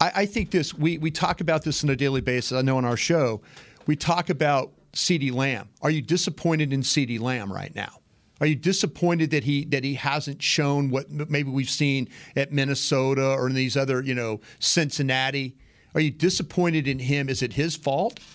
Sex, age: male, 40-59